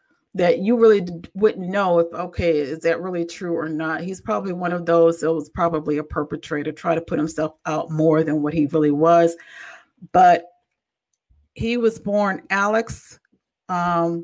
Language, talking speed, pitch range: English, 170 wpm, 165-195 Hz